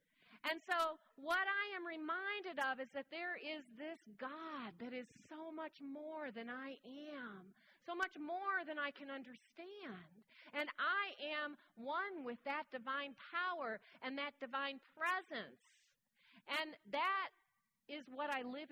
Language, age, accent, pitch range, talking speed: English, 40-59, American, 240-325 Hz, 145 wpm